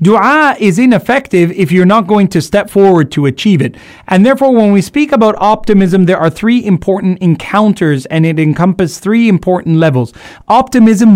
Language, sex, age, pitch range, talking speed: English, male, 30-49, 175-225 Hz, 170 wpm